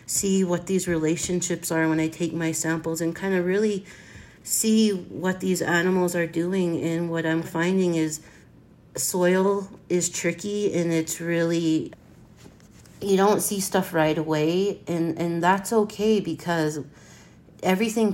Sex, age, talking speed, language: female, 30-49, 140 wpm, English